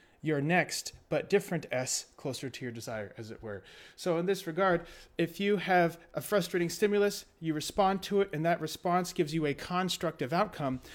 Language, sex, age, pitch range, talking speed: English, male, 30-49, 140-185 Hz, 185 wpm